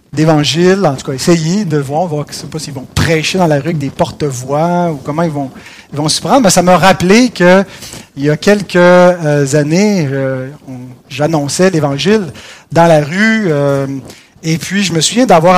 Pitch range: 155-215 Hz